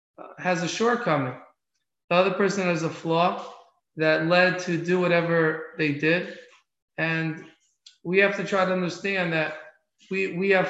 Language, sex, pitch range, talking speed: English, male, 160-185 Hz, 150 wpm